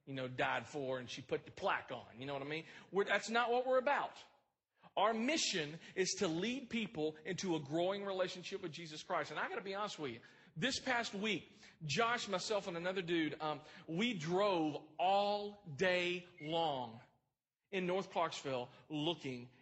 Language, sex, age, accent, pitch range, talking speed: English, male, 40-59, American, 160-230 Hz, 185 wpm